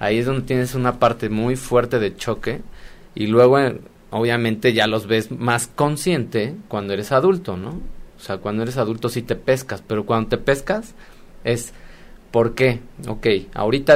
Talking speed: 170 wpm